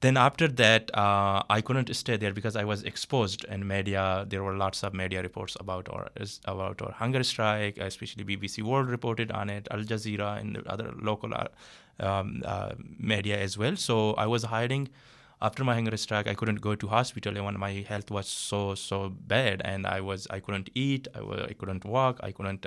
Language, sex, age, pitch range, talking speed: English, male, 20-39, 100-115 Hz, 205 wpm